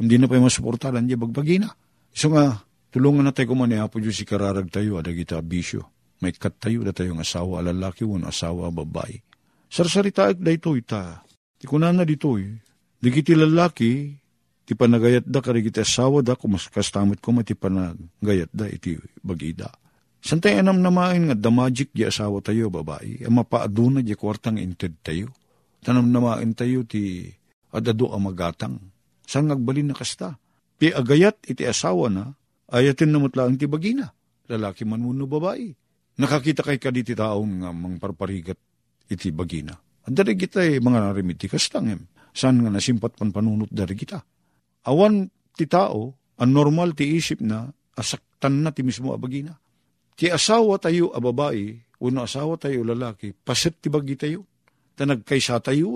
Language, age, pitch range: Filipino, 50-69, 100-140 Hz